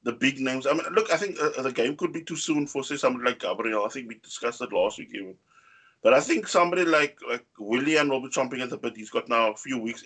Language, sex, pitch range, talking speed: English, male, 125-170 Hz, 280 wpm